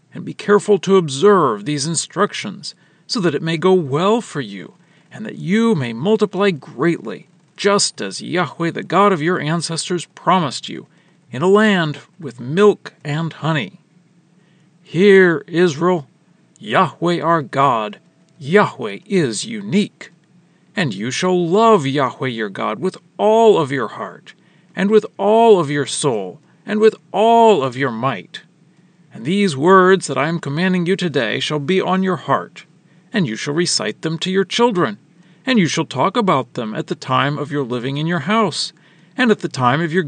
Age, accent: 40-59, American